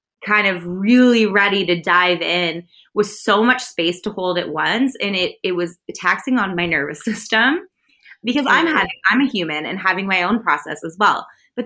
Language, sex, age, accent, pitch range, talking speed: English, female, 20-39, American, 175-225 Hz, 195 wpm